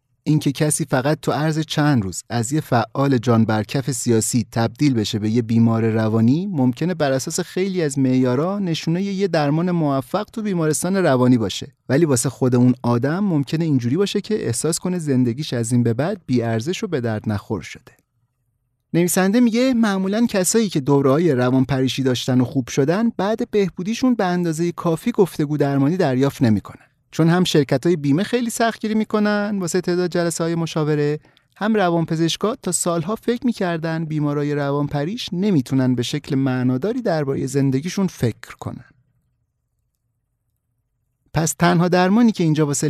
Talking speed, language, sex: 155 wpm, Persian, male